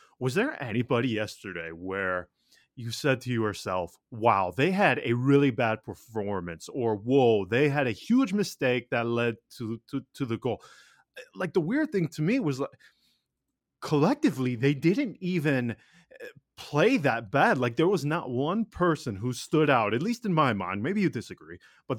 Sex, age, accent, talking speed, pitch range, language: male, 20-39, American, 170 wpm, 115-160 Hz, English